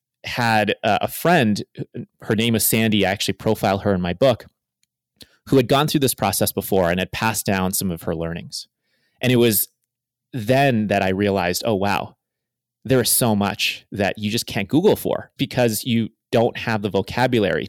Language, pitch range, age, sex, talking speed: English, 100-125 Hz, 30-49, male, 185 wpm